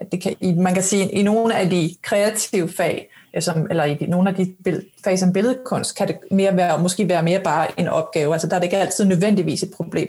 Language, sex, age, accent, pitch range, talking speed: Danish, female, 30-49, native, 180-215 Hz, 230 wpm